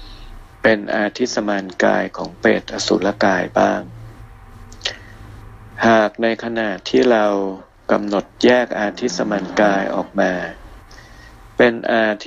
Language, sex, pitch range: Thai, male, 100-115 Hz